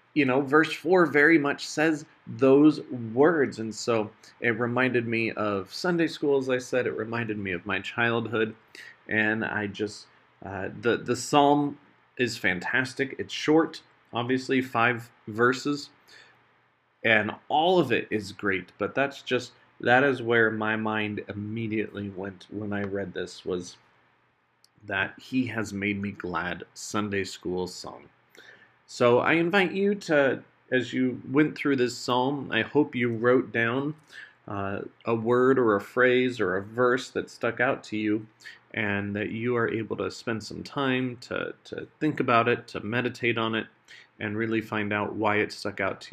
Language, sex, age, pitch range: English, male, 30-49, 105-140 Hz